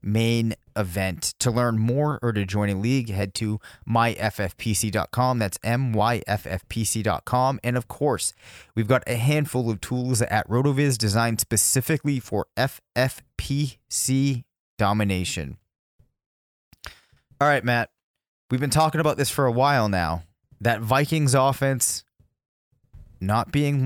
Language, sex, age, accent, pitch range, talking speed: English, male, 30-49, American, 100-125 Hz, 120 wpm